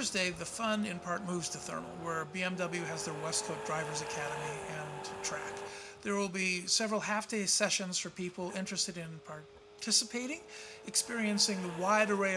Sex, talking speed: male, 160 wpm